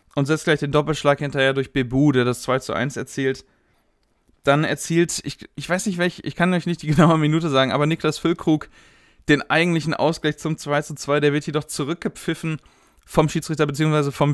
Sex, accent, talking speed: male, German, 195 wpm